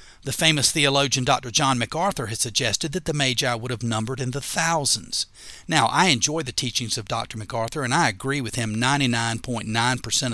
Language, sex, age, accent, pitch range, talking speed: English, male, 40-59, American, 115-145 Hz, 180 wpm